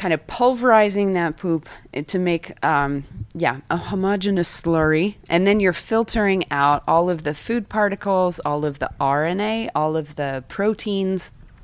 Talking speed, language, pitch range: 155 wpm, English, 145-195 Hz